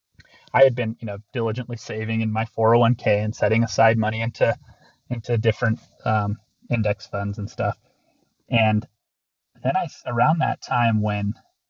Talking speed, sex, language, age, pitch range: 150 wpm, male, English, 30-49, 105-115 Hz